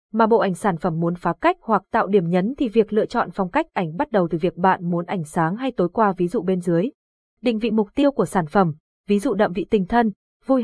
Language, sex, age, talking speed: Vietnamese, female, 20-39, 270 wpm